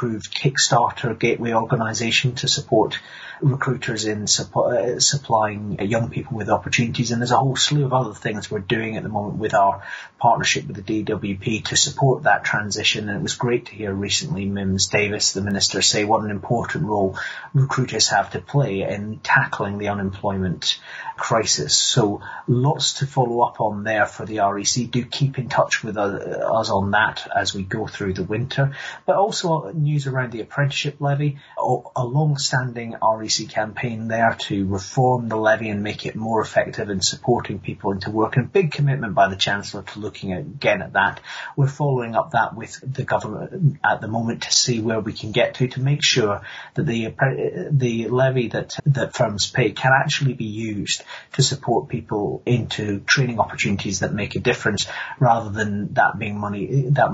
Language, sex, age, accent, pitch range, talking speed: English, male, 30-49, British, 105-130 Hz, 180 wpm